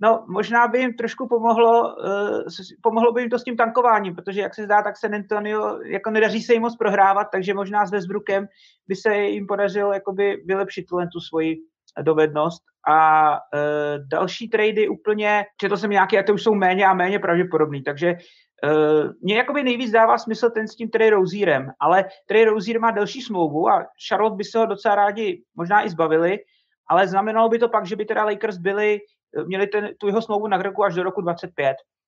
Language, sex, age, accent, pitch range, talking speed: Czech, male, 30-49, native, 175-220 Hz, 195 wpm